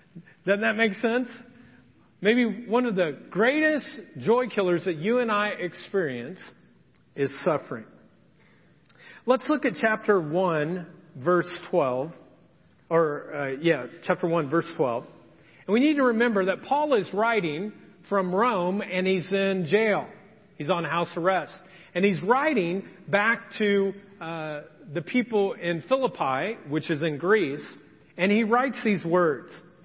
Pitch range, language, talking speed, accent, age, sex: 175-245 Hz, English, 140 wpm, American, 40-59, male